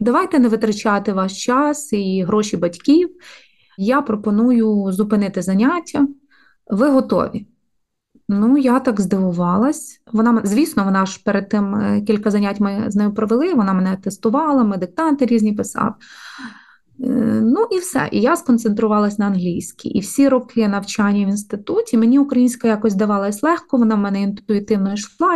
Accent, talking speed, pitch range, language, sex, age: native, 145 wpm, 205-250 Hz, Ukrainian, female, 20-39